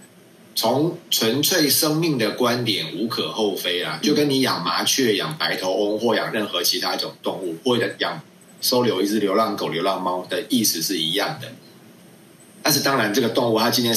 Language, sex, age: Chinese, male, 30-49